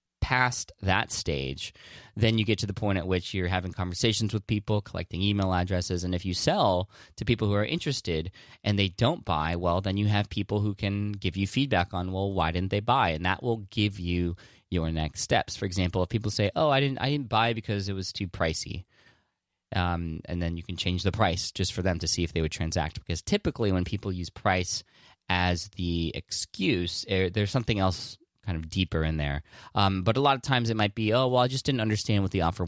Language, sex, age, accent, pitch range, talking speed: English, male, 20-39, American, 85-110 Hz, 230 wpm